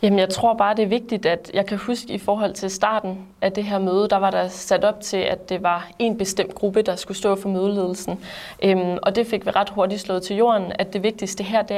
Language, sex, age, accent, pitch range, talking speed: Danish, female, 20-39, native, 190-210 Hz, 260 wpm